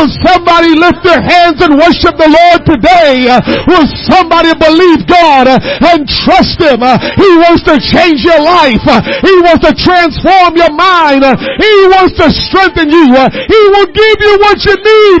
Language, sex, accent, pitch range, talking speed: English, male, American, 305-360 Hz, 160 wpm